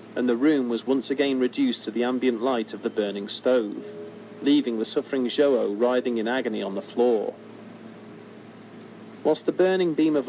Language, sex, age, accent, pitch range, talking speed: English, male, 40-59, British, 115-145 Hz, 175 wpm